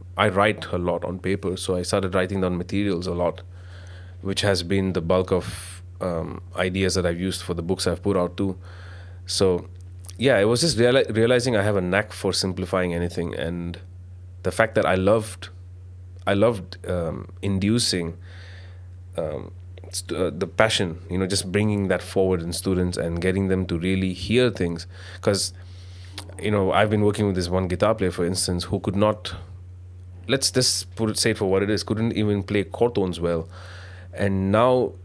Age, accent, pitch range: 30-49, Indian, 90-100 Hz